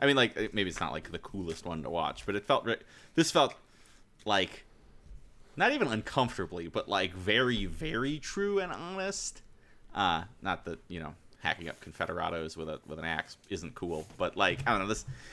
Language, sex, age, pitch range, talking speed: English, male, 30-49, 85-120 Hz, 190 wpm